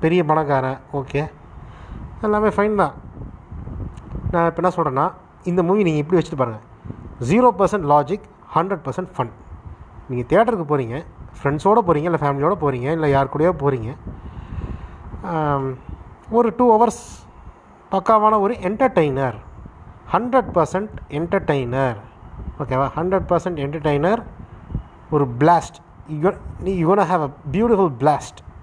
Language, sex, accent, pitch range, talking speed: Tamil, male, native, 125-185 Hz, 115 wpm